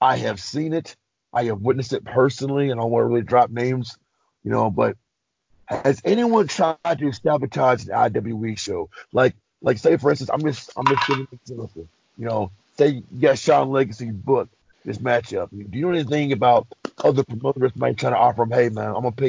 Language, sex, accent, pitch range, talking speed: English, male, American, 110-130 Hz, 210 wpm